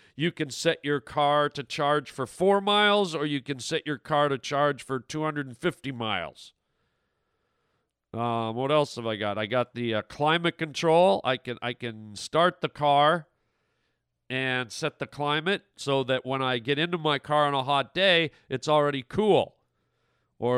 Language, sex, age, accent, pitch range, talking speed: English, male, 40-59, American, 125-160 Hz, 185 wpm